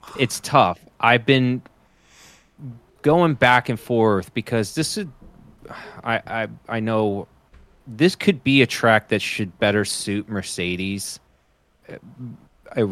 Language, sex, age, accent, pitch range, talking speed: English, male, 30-49, American, 95-125 Hz, 120 wpm